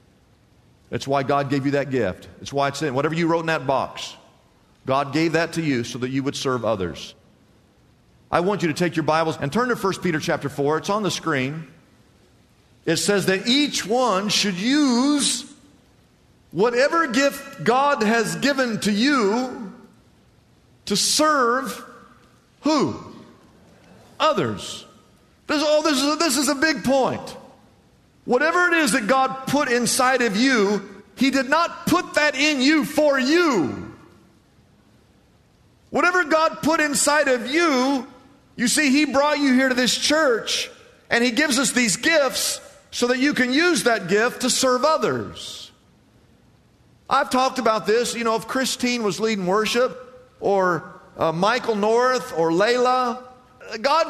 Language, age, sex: English, 50-69, male